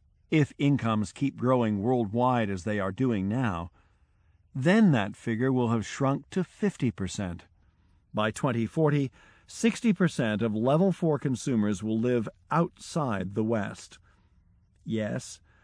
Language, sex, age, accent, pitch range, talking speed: English, male, 50-69, American, 95-145 Hz, 120 wpm